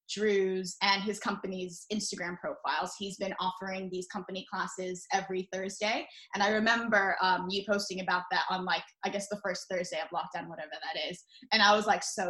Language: English